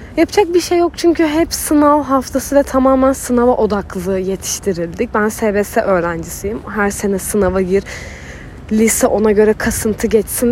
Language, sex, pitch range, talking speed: Turkish, female, 200-275 Hz, 145 wpm